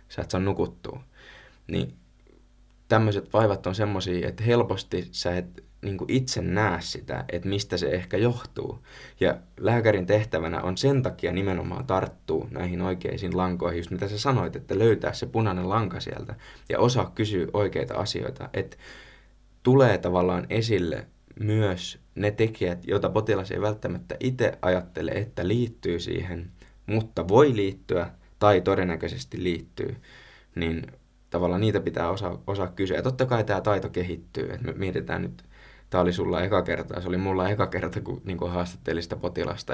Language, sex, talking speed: Finnish, male, 145 wpm